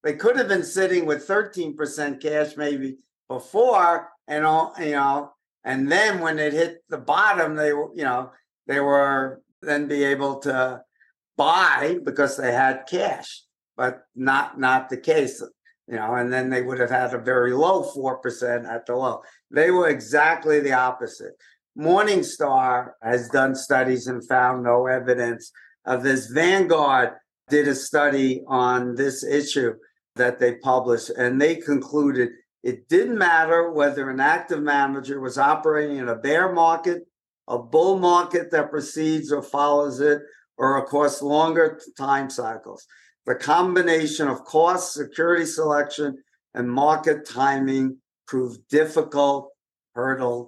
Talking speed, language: 145 wpm, English